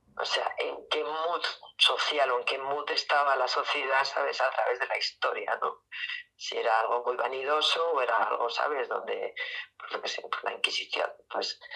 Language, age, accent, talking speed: Spanish, 40-59, Spanish, 175 wpm